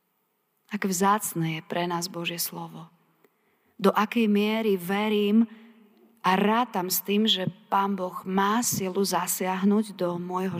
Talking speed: 130 wpm